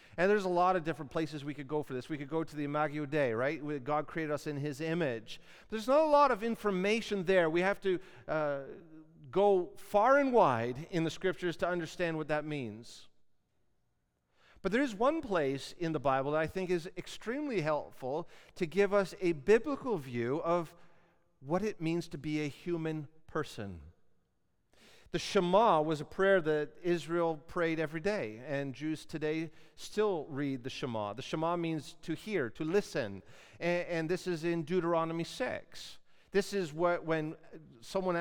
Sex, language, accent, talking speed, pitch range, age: male, English, American, 180 wpm, 150-195 Hz, 40-59